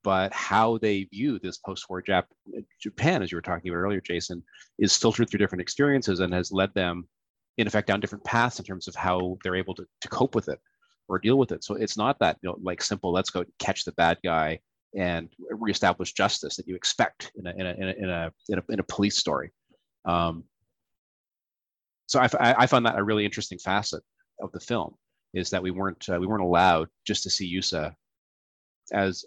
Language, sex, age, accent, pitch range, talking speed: English, male, 30-49, American, 90-105 Hz, 195 wpm